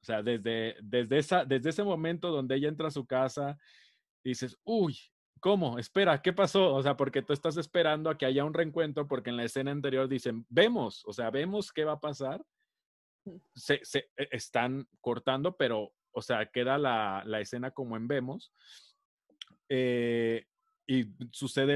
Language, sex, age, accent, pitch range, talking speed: Spanish, male, 30-49, Mexican, 115-150 Hz, 170 wpm